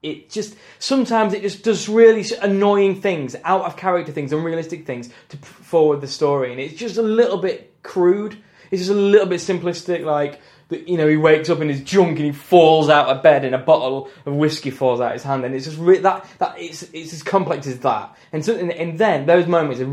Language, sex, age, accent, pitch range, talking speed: English, male, 10-29, British, 145-195 Hz, 230 wpm